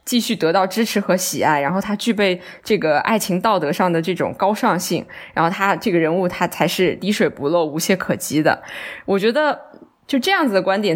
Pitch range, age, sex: 170-230 Hz, 10-29, female